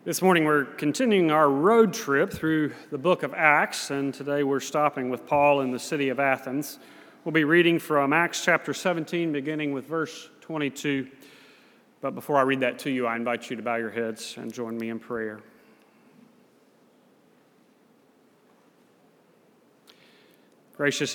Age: 30-49